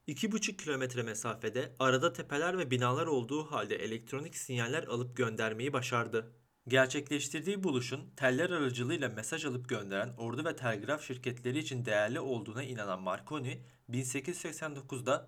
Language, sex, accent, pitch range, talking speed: Turkish, male, native, 120-150 Hz, 125 wpm